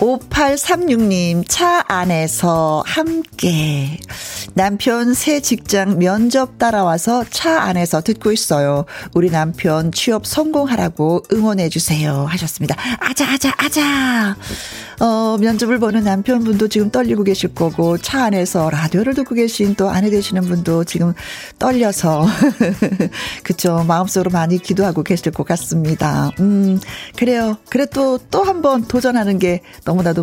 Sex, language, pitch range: female, Korean, 175-245 Hz